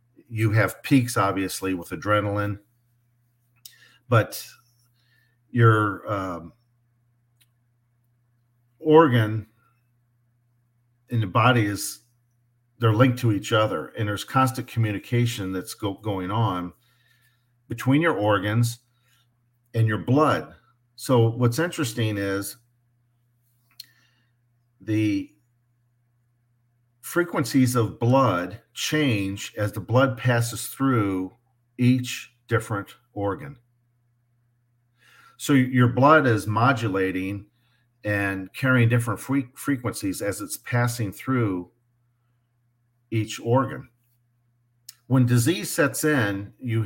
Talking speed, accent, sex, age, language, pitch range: 90 wpm, American, male, 50-69, English, 110-120 Hz